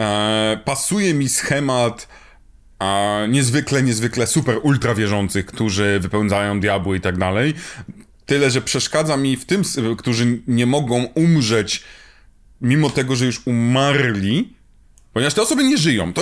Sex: male